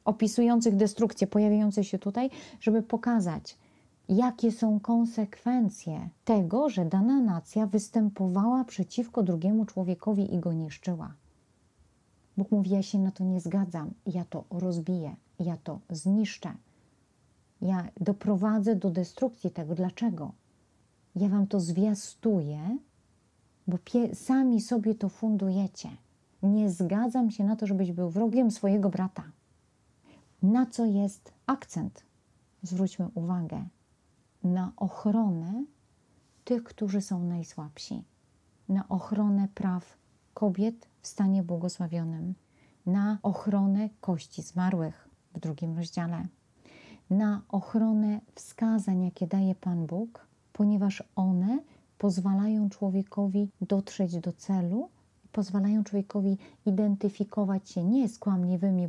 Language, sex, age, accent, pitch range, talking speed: Polish, female, 40-59, native, 185-215 Hz, 110 wpm